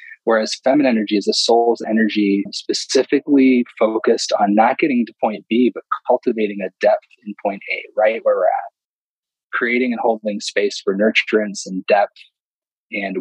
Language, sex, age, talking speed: English, male, 20-39, 160 wpm